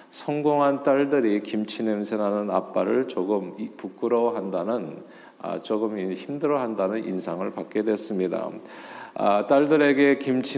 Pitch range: 110-145 Hz